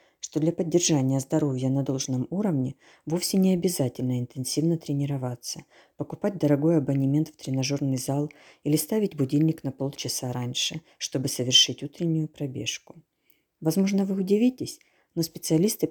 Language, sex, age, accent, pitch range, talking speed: Ukrainian, female, 40-59, native, 135-170 Hz, 125 wpm